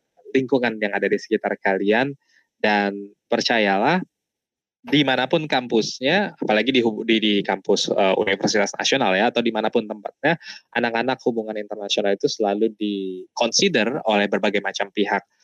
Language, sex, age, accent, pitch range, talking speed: Indonesian, male, 20-39, native, 100-120 Hz, 125 wpm